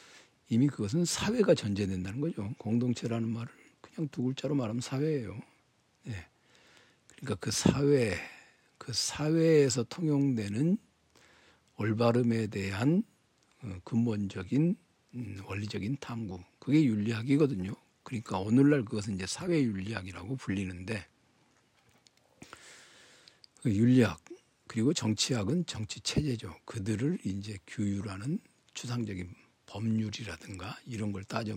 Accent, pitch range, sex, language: native, 105-140 Hz, male, Korean